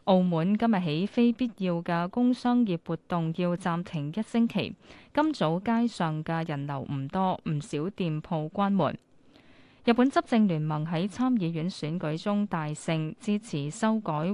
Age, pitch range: 20-39, 160-215 Hz